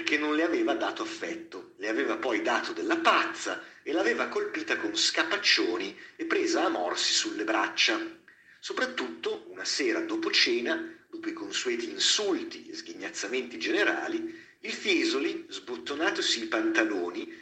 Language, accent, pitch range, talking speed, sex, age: Italian, native, 330-370 Hz, 125 wpm, male, 50-69